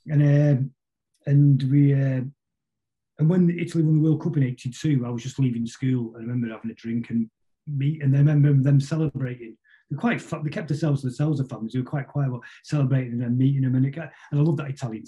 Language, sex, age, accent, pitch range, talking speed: English, male, 30-49, British, 120-150 Hz, 230 wpm